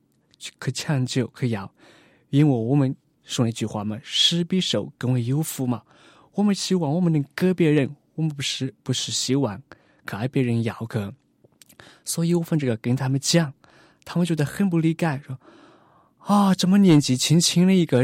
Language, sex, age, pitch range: Chinese, male, 20-39, 130-170 Hz